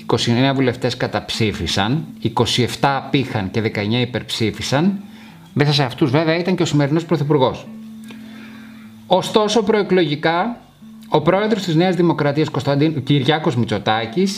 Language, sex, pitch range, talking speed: Greek, male, 130-185 Hz, 110 wpm